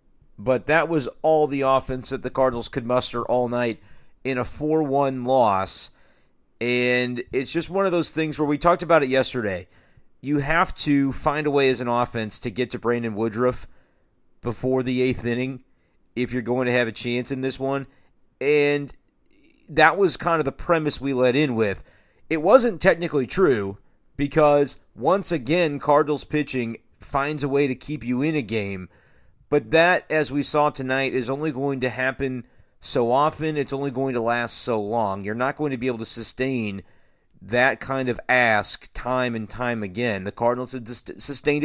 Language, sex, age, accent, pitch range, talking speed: English, male, 40-59, American, 120-150 Hz, 185 wpm